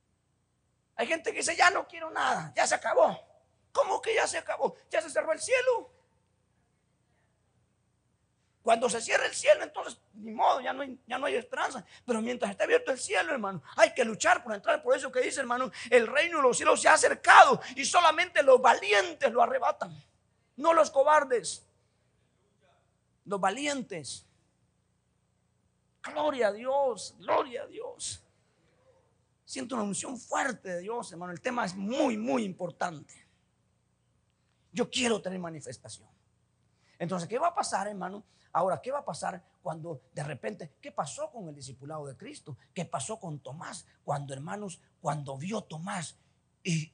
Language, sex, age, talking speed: Spanish, male, 40-59, 160 wpm